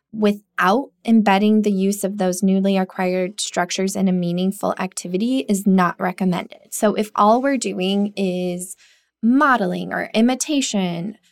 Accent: American